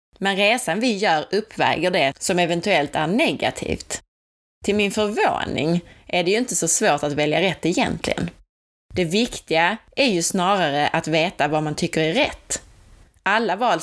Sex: female